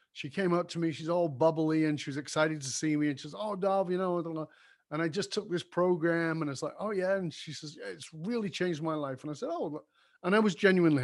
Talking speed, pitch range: 285 wpm, 140-180 Hz